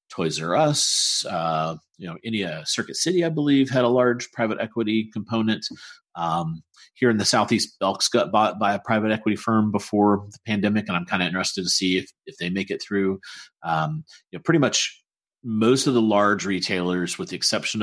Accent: American